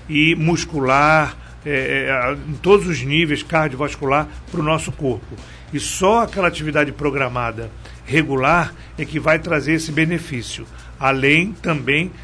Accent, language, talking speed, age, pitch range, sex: Brazilian, Portuguese, 125 wpm, 60-79, 135-160 Hz, male